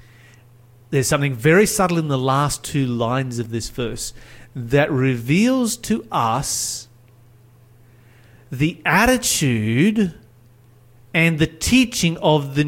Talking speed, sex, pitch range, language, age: 110 wpm, male, 120-165 Hz, English, 30-49